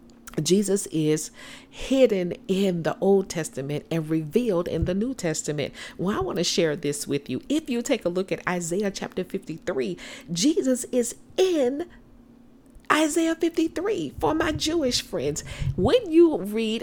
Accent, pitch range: American, 190-295 Hz